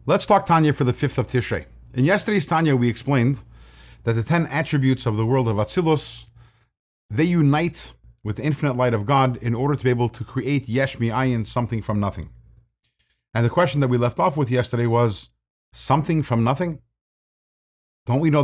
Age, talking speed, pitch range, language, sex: 50-69, 185 wpm, 120-170 Hz, English, male